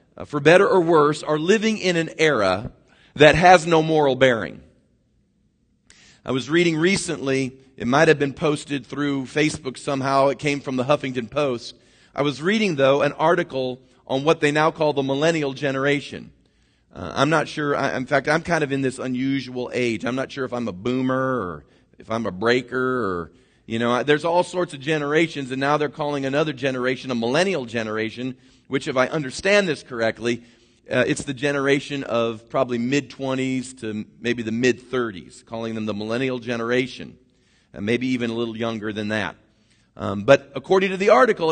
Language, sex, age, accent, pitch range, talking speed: English, male, 40-59, American, 125-155 Hz, 190 wpm